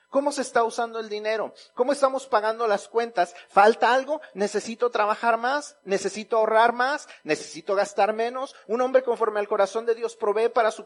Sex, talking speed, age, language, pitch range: male, 175 wpm, 40-59, Spanish, 190-245 Hz